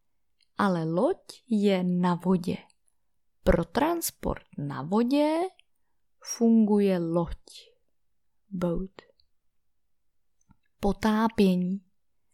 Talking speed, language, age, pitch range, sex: 65 wpm, Czech, 20-39, 180-255 Hz, female